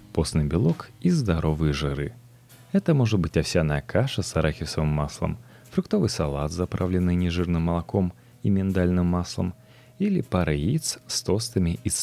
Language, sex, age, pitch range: Russian, male, 30-49, 75-120 Hz